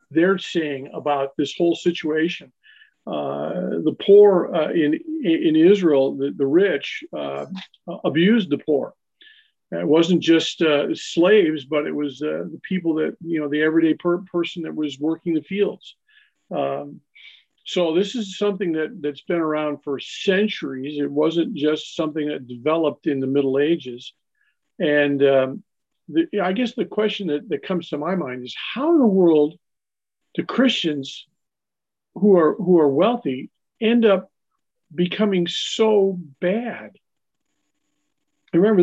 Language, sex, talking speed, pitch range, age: English, male, 145 wpm, 150-205 Hz, 50-69